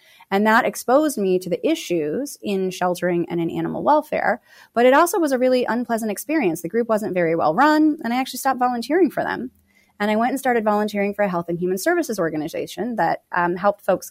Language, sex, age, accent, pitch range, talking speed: English, female, 30-49, American, 180-250 Hz, 215 wpm